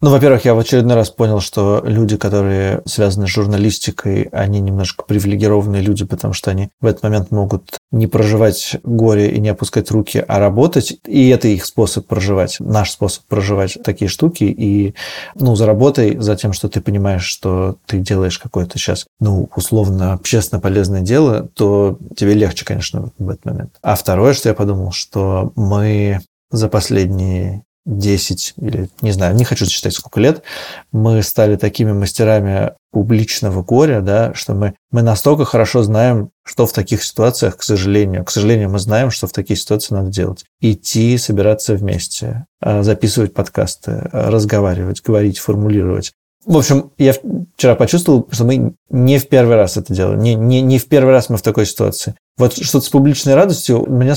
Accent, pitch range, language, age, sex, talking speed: native, 100-120 Hz, Russian, 20-39, male, 165 wpm